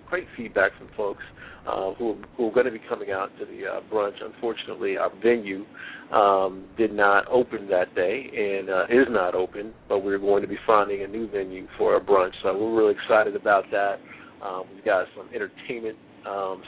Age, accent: 50-69, American